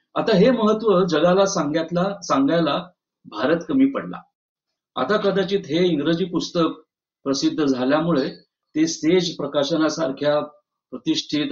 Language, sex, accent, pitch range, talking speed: Marathi, male, native, 150-210 Hz, 105 wpm